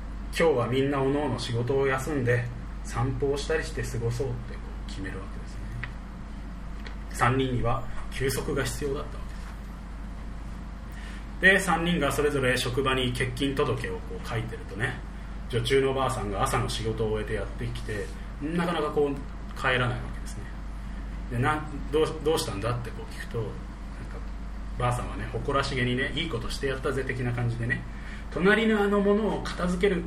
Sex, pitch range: male, 100-140 Hz